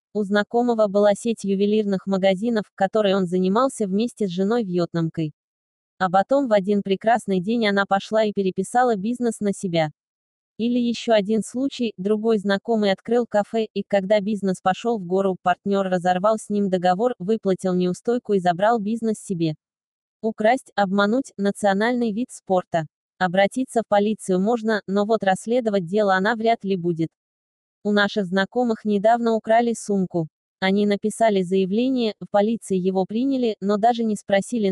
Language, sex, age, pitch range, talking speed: English, female, 20-39, 190-225 Hz, 145 wpm